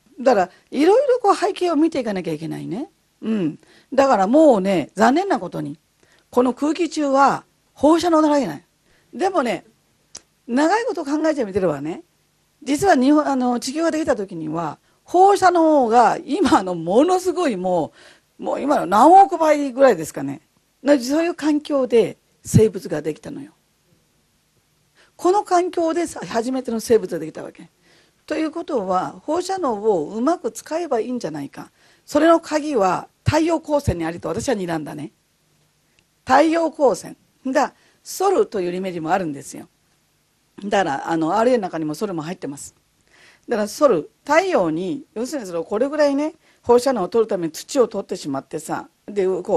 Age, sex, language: 40-59, female, Japanese